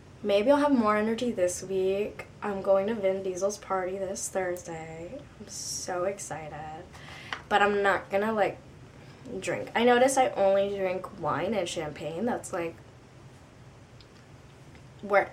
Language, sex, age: English, female, 10-29